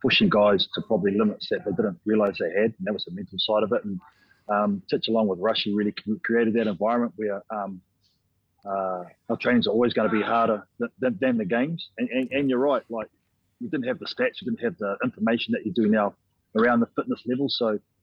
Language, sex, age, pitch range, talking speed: English, male, 30-49, 105-125 Hz, 230 wpm